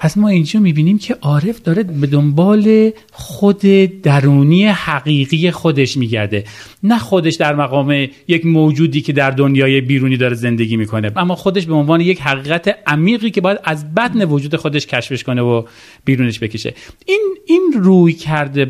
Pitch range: 140-190 Hz